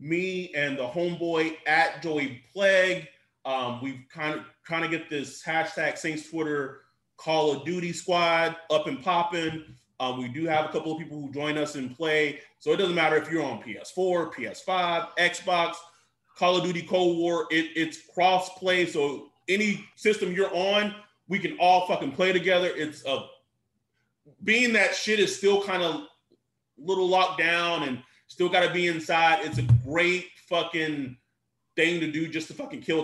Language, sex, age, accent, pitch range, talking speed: English, male, 30-49, American, 135-175 Hz, 175 wpm